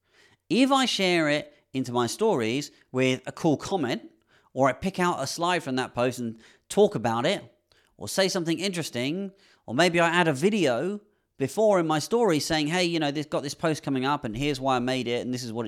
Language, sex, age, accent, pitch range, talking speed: English, male, 30-49, British, 125-190 Hz, 225 wpm